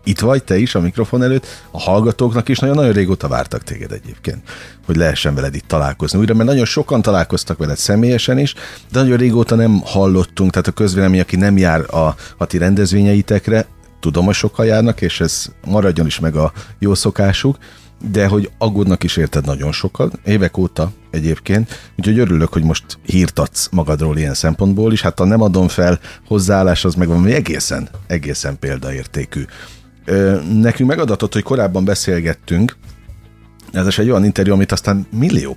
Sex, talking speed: male, 170 wpm